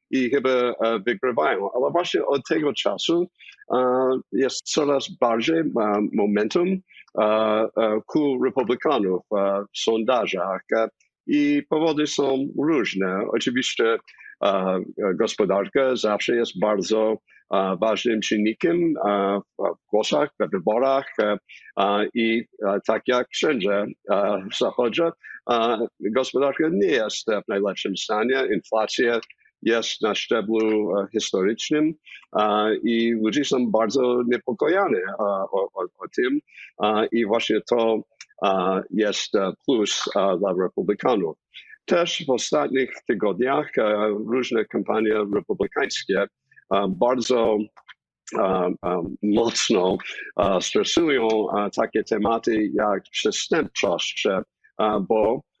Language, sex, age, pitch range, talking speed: Polish, male, 50-69, 105-150 Hz, 115 wpm